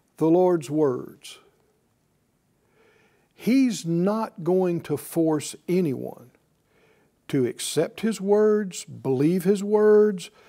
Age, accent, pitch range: 60-79, American, 145-205 Hz